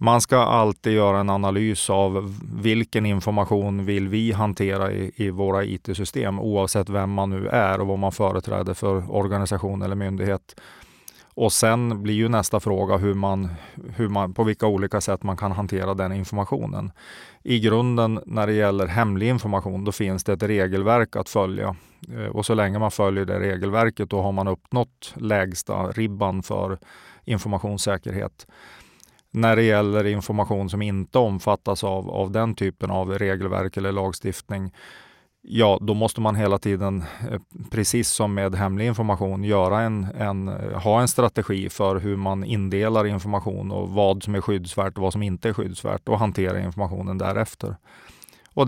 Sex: male